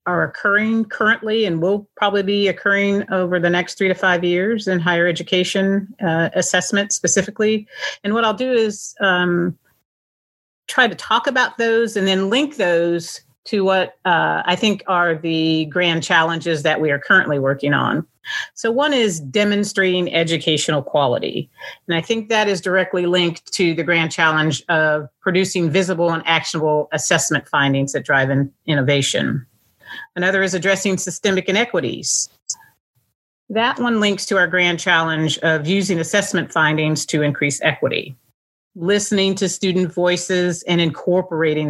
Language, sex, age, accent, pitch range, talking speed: English, female, 40-59, American, 160-200 Hz, 150 wpm